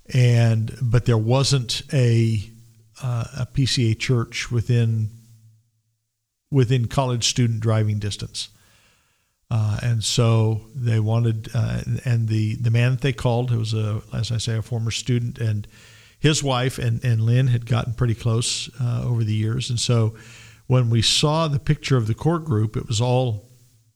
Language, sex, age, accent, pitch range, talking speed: English, male, 50-69, American, 110-125 Hz, 165 wpm